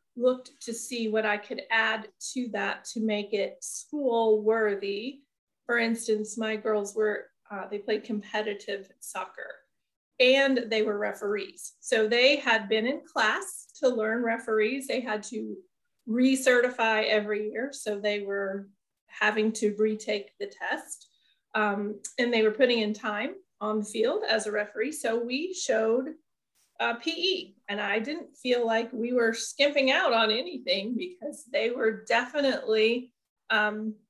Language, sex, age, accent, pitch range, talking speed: English, female, 30-49, American, 215-270 Hz, 150 wpm